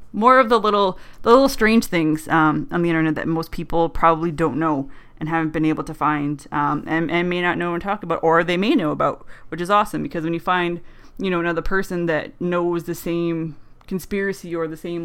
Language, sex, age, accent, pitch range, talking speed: English, female, 20-39, American, 160-200 Hz, 225 wpm